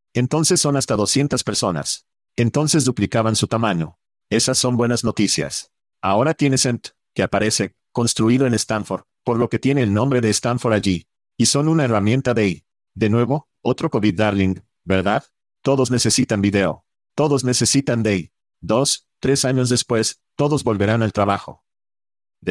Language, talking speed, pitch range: Spanish, 150 wpm, 105-130 Hz